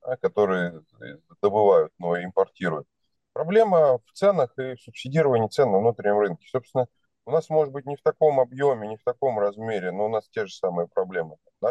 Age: 20-39